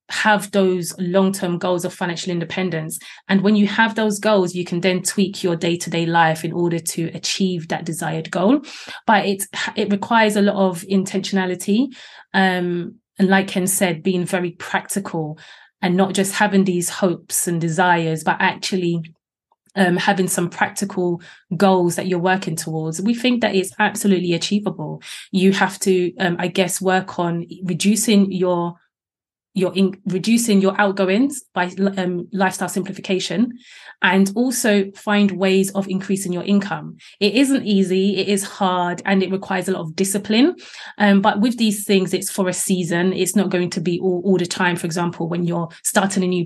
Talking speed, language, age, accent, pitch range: 170 wpm, English, 20-39, British, 175-200 Hz